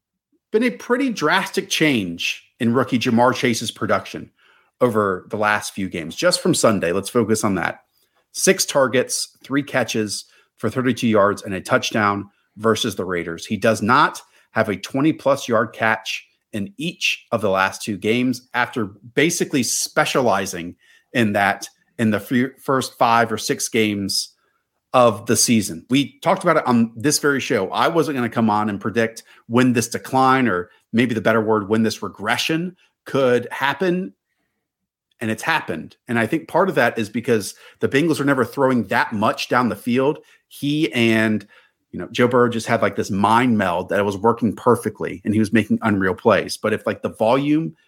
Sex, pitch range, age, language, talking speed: male, 105-135 Hz, 40-59, English, 180 wpm